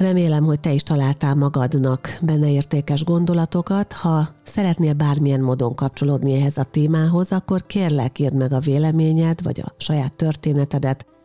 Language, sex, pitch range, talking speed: Hungarian, female, 130-160 Hz, 145 wpm